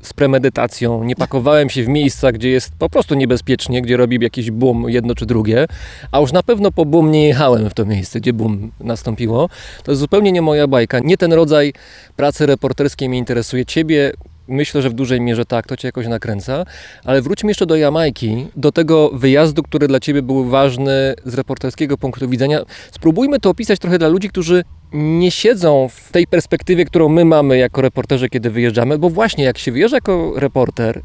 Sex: male